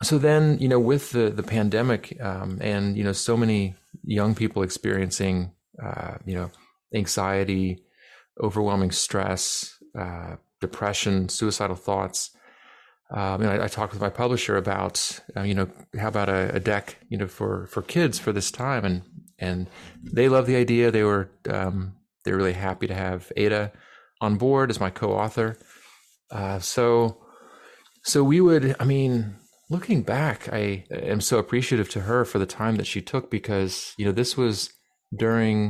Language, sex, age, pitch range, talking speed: English, male, 30-49, 95-115 Hz, 165 wpm